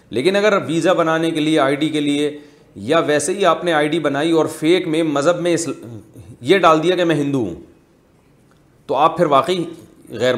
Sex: male